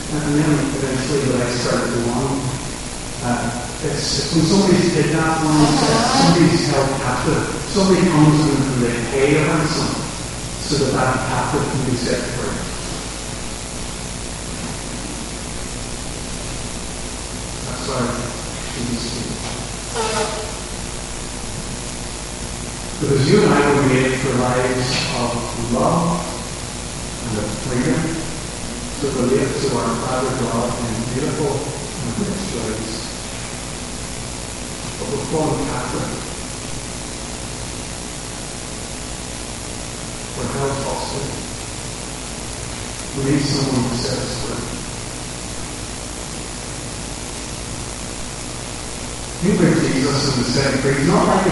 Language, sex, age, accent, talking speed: English, female, 10-29, American, 100 wpm